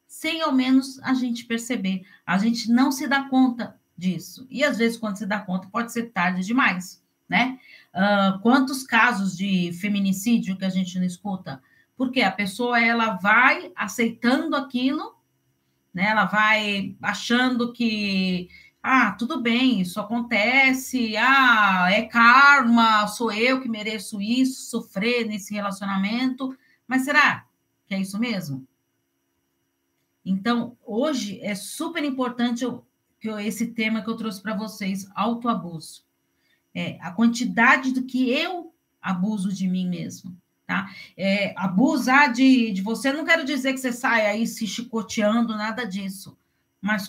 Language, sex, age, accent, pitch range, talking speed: Portuguese, female, 40-59, Brazilian, 190-250 Hz, 145 wpm